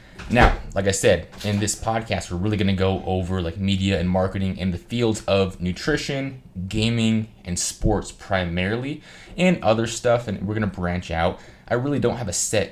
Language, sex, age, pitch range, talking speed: English, male, 20-39, 85-105 Hz, 195 wpm